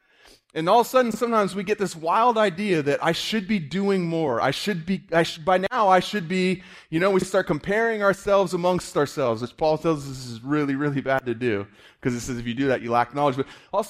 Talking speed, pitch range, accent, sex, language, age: 250 wpm, 120-185 Hz, American, male, English, 20-39